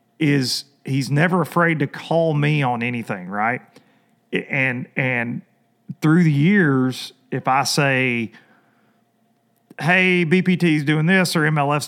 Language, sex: English, male